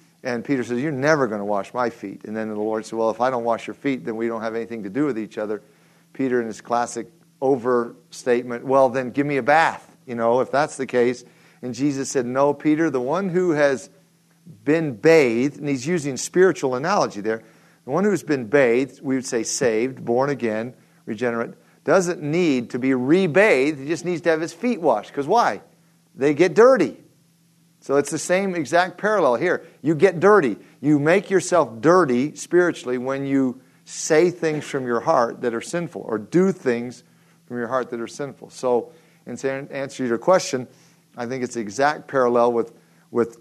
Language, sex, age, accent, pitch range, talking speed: English, male, 50-69, American, 120-165 Hz, 200 wpm